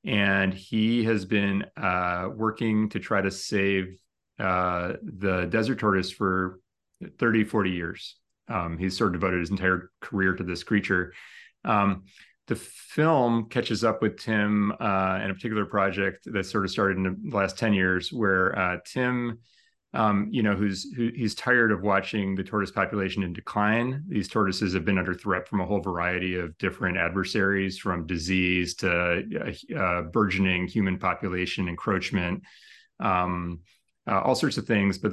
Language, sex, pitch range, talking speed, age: English, male, 90-105 Hz, 165 wpm, 30-49